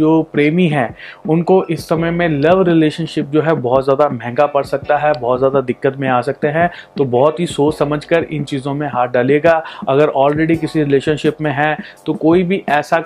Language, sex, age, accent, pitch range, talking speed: Hindi, male, 30-49, native, 135-160 Hz, 200 wpm